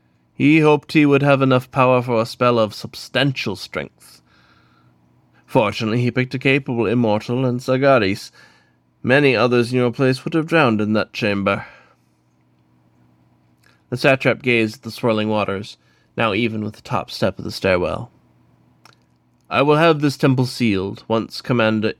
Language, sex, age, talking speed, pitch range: English, male, 20-39, 155 wpm, 85-130 Hz